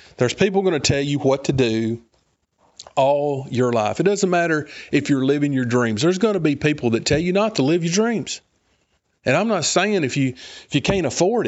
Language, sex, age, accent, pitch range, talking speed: English, male, 40-59, American, 125-185 Hz, 225 wpm